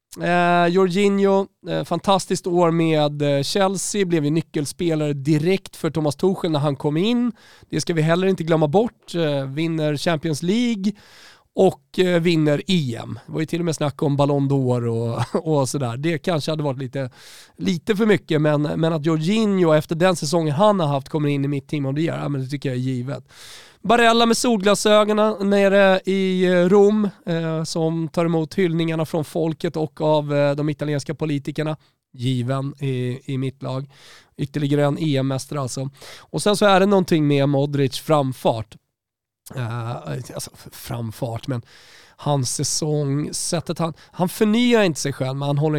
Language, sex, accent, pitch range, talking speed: Swedish, male, native, 140-175 Hz, 170 wpm